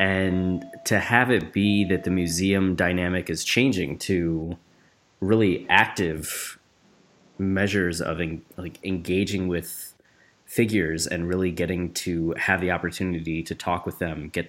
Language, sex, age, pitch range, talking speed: English, male, 20-39, 85-95 Hz, 135 wpm